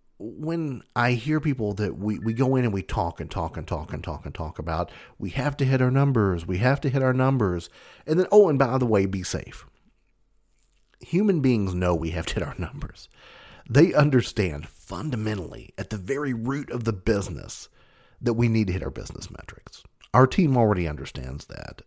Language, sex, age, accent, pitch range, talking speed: English, male, 40-59, American, 90-130 Hz, 205 wpm